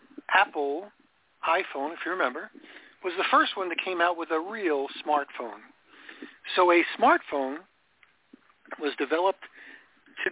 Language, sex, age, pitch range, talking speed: English, male, 50-69, 155-245 Hz, 130 wpm